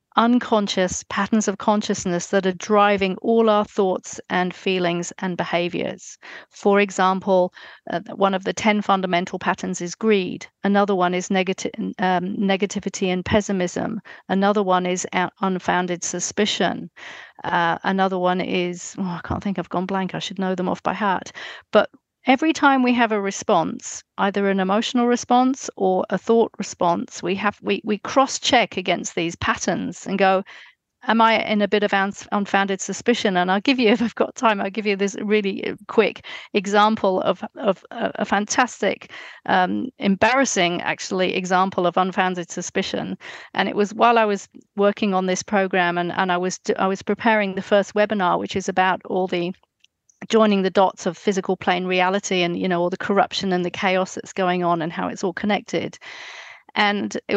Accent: British